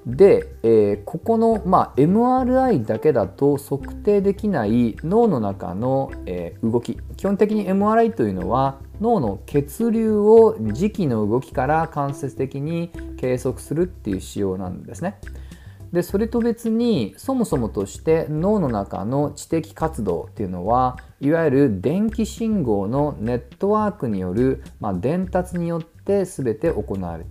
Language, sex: Japanese, male